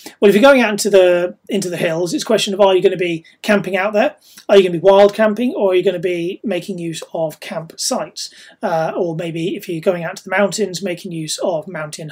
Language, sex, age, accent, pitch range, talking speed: English, male, 30-49, British, 170-205 Hz, 265 wpm